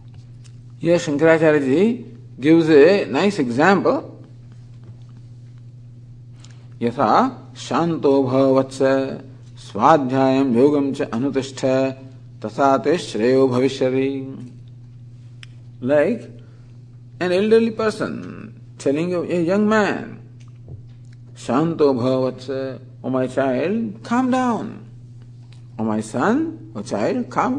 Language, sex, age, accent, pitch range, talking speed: English, male, 50-69, Indian, 120-145 Hz, 85 wpm